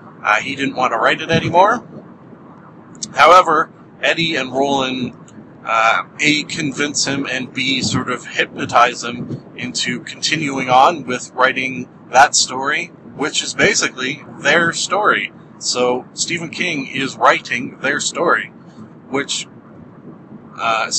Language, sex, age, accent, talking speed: English, male, 40-59, American, 125 wpm